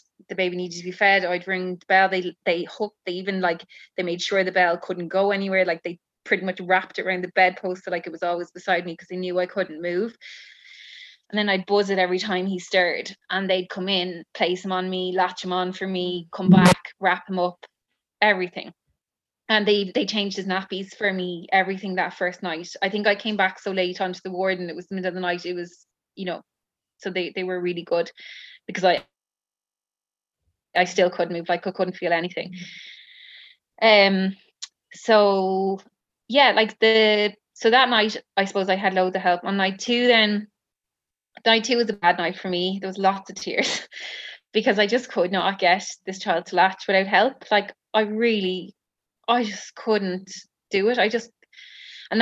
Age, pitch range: 20-39, 180-205 Hz